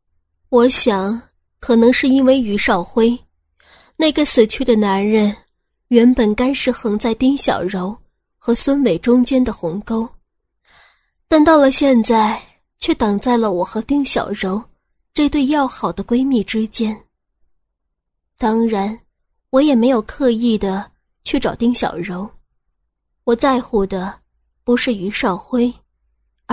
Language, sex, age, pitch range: Chinese, female, 20-39, 210-260 Hz